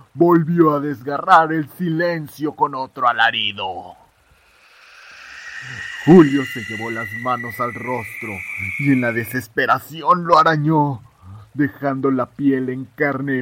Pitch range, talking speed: 100-120 Hz, 115 wpm